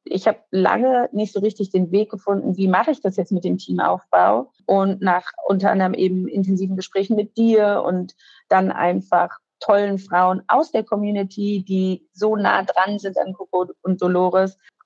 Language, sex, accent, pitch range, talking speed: German, female, German, 180-205 Hz, 175 wpm